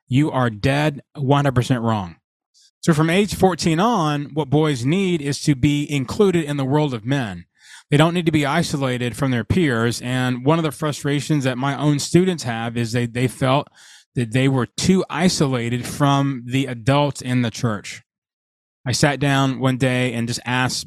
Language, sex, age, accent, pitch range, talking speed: English, male, 20-39, American, 120-150 Hz, 185 wpm